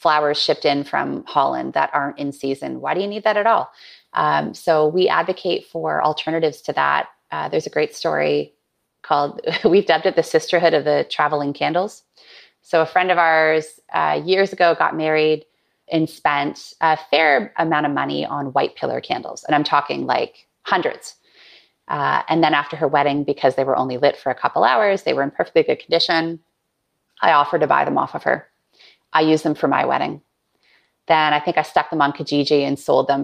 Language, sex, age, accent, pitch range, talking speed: English, female, 30-49, American, 150-185 Hz, 200 wpm